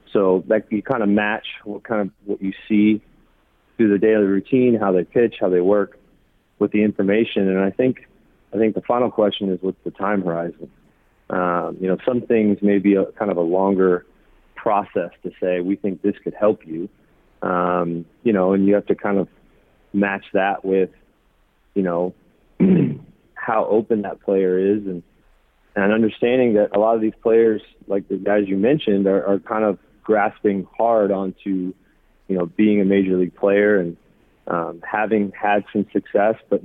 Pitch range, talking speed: 95-105 Hz, 185 wpm